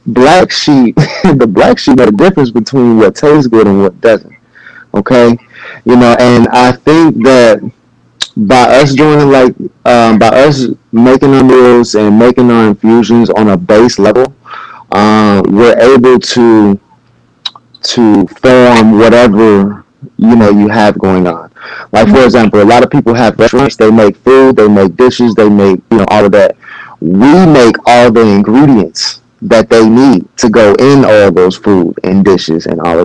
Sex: male